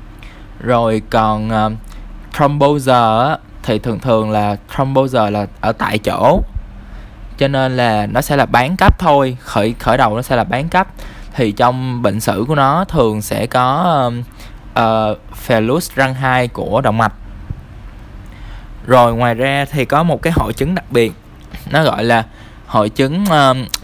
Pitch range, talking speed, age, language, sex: 110-135 Hz, 160 wpm, 20-39, Vietnamese, male